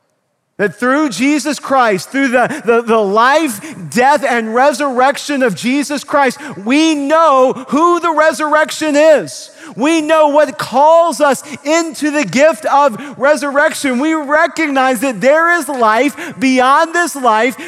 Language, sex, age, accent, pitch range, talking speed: English, male, 40-59, American, 190-285 Hz, 135 wpm